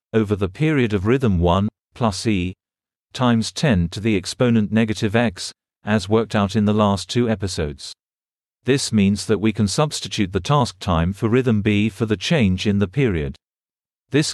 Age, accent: 50-69, British